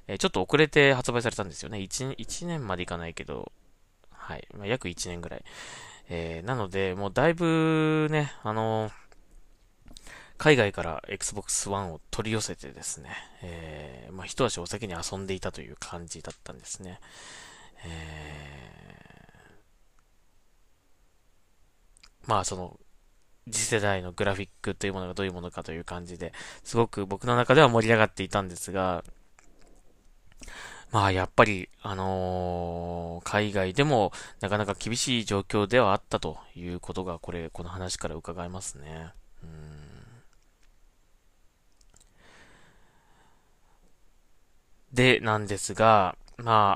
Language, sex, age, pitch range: Japanese, male, 20-39, 85-110 Hz